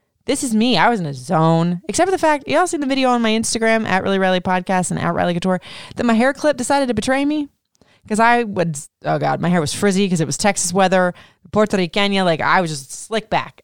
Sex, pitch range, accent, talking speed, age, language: female, 165-220 Hz, American, 255 wpm, 20-39, English